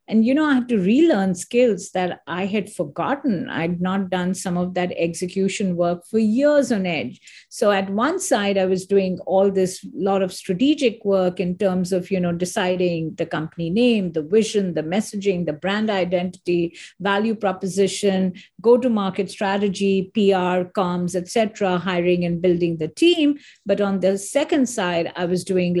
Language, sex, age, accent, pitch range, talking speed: English, female, 50-69, Indian, 180-220 Hz, 170 wpm